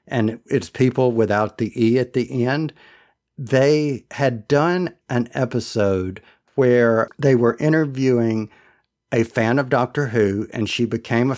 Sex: male